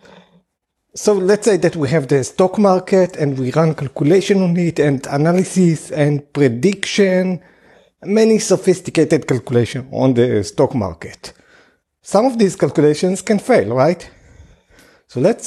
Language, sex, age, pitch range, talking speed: English, male, 50-69, 135-185 Hz, 135 wpm